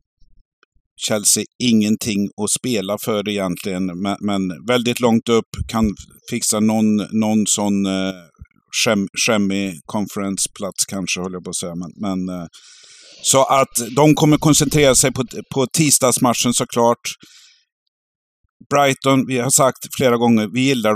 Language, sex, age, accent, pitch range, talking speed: Swedish, male, 50-69, native, 105-130 Hz, 135 wpm